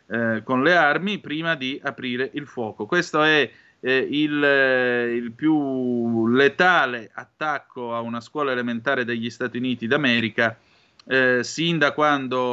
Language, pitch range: Italian, 120-145 Hz